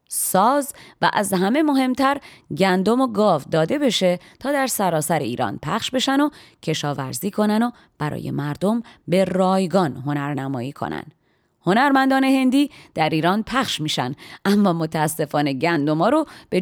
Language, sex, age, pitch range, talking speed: Persian, female, 30-49, 155-245 Hz, 140 wpm